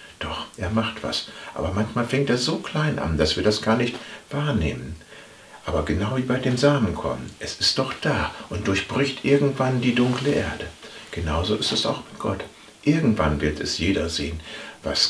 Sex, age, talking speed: male, 60-79, 180 wpm